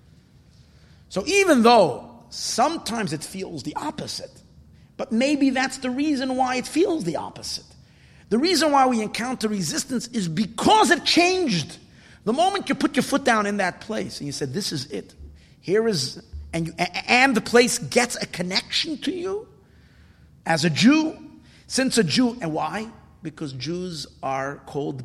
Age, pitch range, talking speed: 50-69, 150-240 Hz, 160 wpm